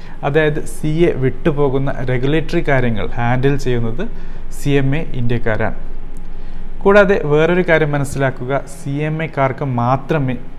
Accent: native